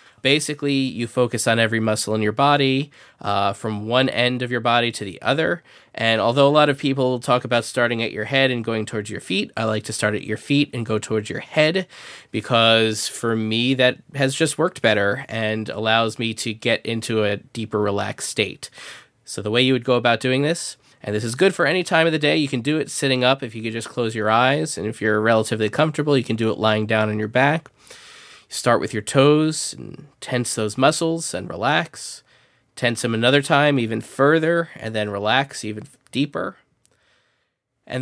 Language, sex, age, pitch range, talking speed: English, male, 20-39, 110-135 Hz, 210 wpm